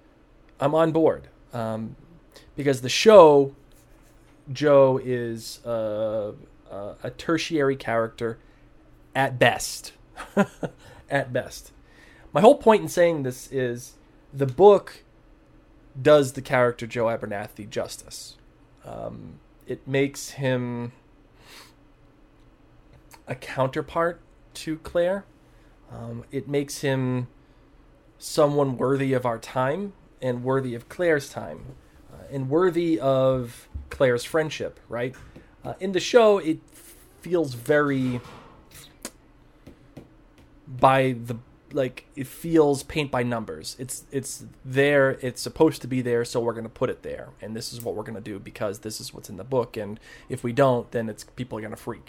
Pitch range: 120-150 Hz